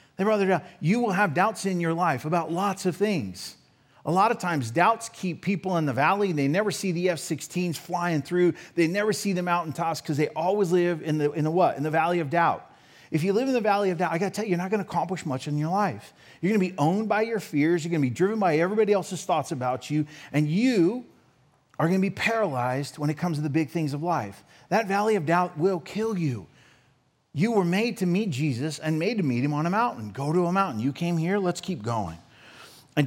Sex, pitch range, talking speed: male, 150-190 Hz, 250 wpm